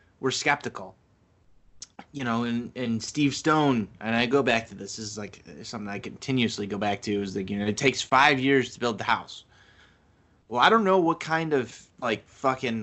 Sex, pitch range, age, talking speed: male, 105-130 Hz, 20-39, 205 wpm